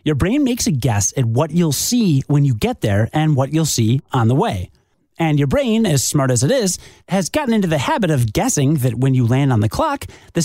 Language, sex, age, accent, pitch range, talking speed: English, male, 30-49, American, 120-165 Hz, 245 wpm